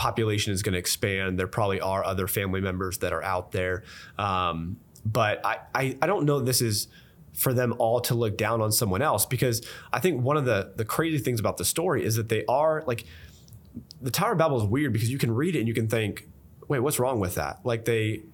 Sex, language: male, English